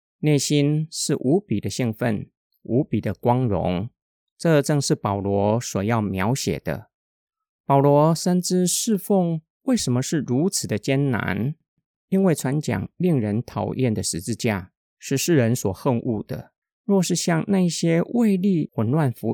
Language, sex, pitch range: Chinese, male, 115-155 Hz